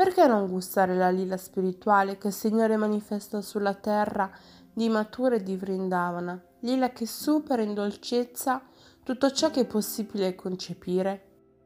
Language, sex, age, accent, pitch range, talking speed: Italian, female, 20-39, native, 175-220 Hz, 145 wpm